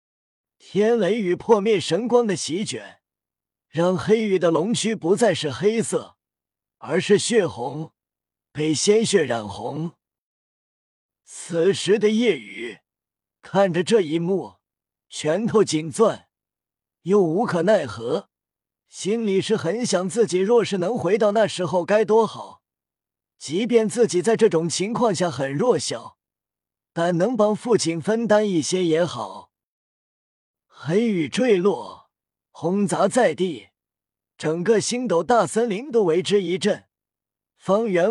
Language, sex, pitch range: Chinese, male, 160-220 Hz